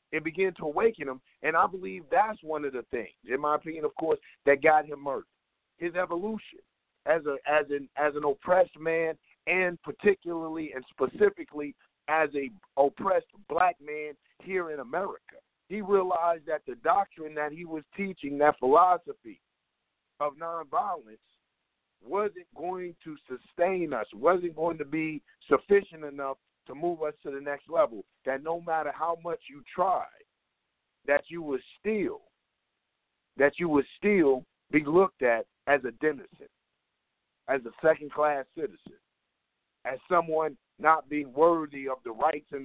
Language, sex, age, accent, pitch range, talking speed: English, male, 50-69, American, 145-185 Hz, 155 wpm